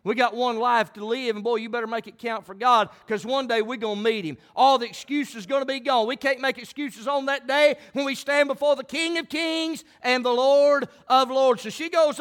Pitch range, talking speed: 260-320 Hz, 250 wpm